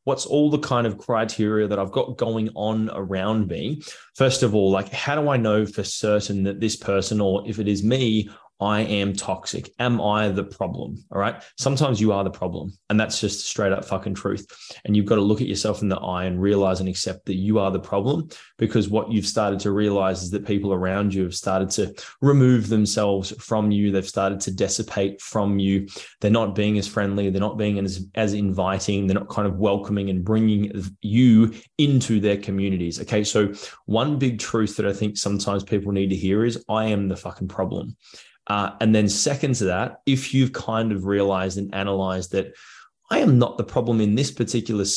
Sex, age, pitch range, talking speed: male, 20-39, 100-110 Hz, 210 wpm